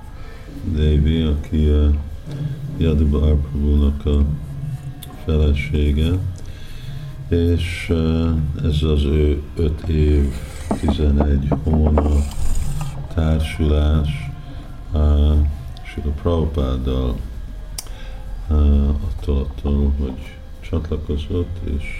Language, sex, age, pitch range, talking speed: Hungarian, male, 50-69, 75-85 Hz, 65 wpm